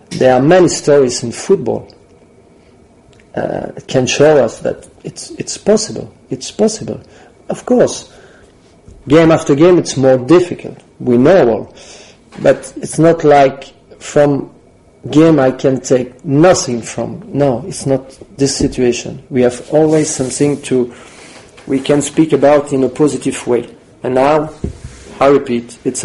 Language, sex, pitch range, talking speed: English, male, 125-150 Hz, 145 wpm